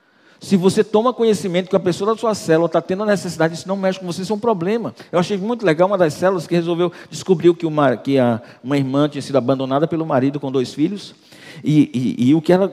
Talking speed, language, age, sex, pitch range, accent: 220 wpm, Portuguese, 50-69, male, 145-185 Hz, Brazilian